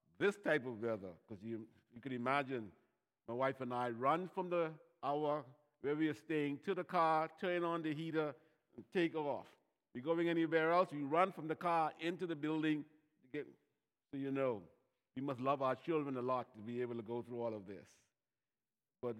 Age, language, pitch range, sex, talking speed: 60-79, English, 125-155 Hz, male, 200 wpm